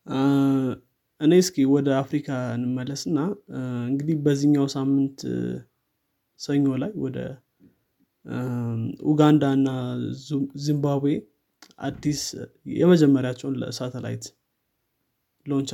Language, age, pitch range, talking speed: Amharic, 20-39, 125-150 Hz, 60 wpm